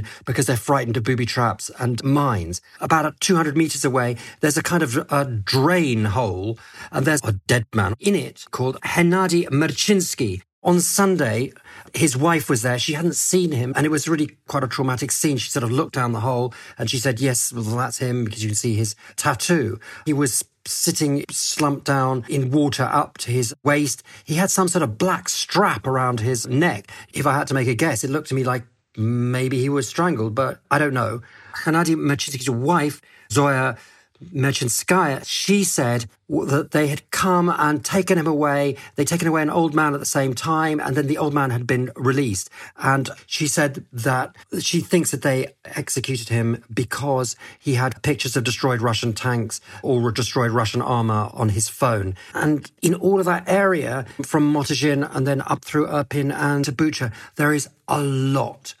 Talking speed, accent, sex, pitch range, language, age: 190 wpm, British, male, 125-150 Hz, English, 40-59